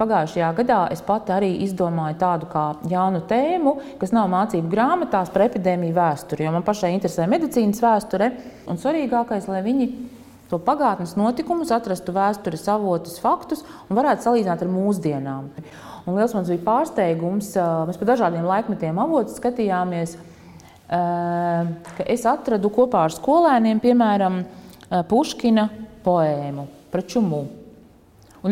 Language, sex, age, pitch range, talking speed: English, female, 30-49, 175-235 Hz, 130 wpm